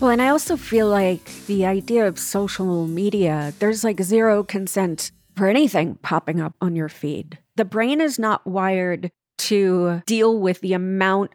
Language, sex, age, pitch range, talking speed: English, female, 40-59, 195-250 Hz, 170 wpm